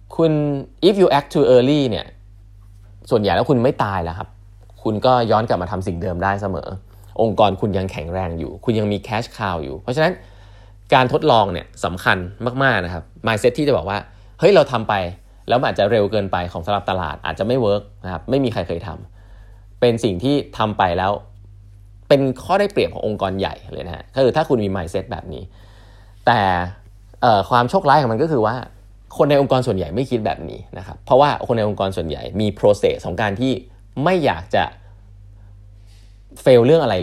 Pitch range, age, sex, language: 95-125 Hz, 20-39, male, Thai